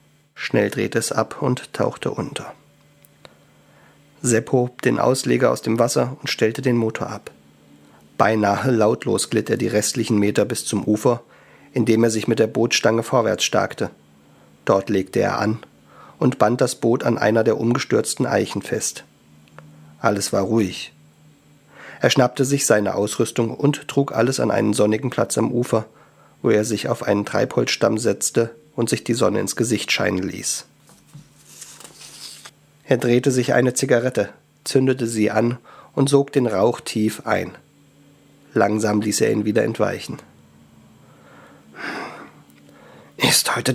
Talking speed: 145 wpm